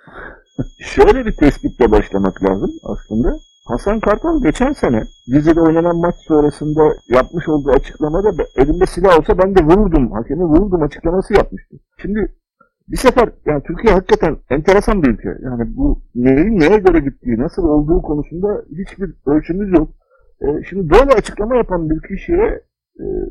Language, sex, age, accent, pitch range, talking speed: Turkish, male, 50-69, native, 160-230 Hz, 145 wpm